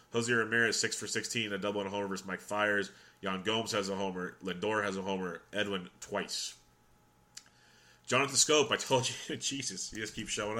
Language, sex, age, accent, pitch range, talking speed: English, male, 30-49, American, 95-115 Hz, 185 wpm